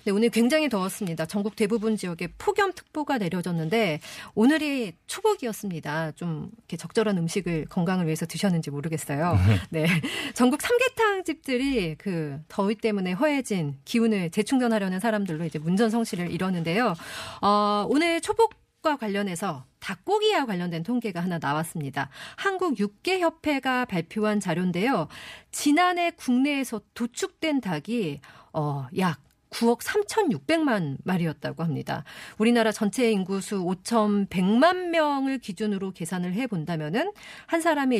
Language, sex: Korean, female